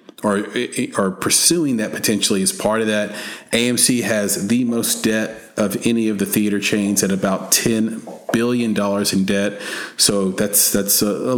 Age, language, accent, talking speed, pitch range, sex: 40-59, English, American, 165 wpm, 100-115 Hz, male